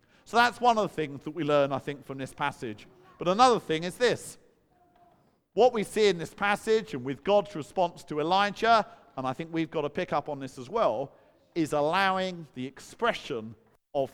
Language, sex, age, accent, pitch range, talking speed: English, male, 50-69, British, 140-200 Hz, 205 wpm